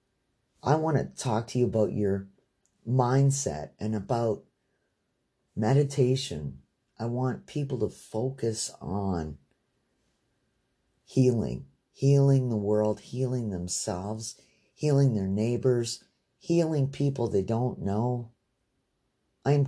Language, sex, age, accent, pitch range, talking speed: English, male, 40-59, American, 105-135 Hz, 100 wpm